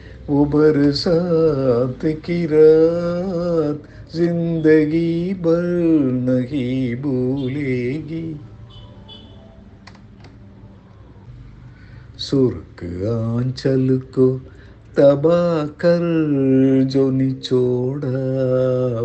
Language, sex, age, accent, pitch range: Tamil, male, 60-79, native, 120-170 Hz